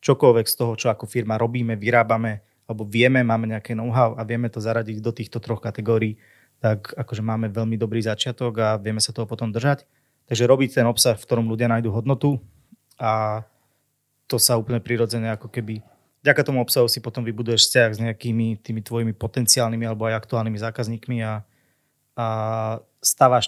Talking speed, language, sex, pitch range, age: 175 wpm, Slovak, male, 110-130 Hz, 30-49